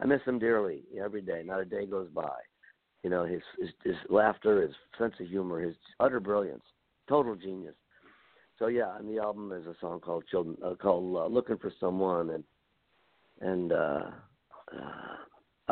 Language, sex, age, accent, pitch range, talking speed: English, male, 60-79, American, 90-115 Hz, 170 wpm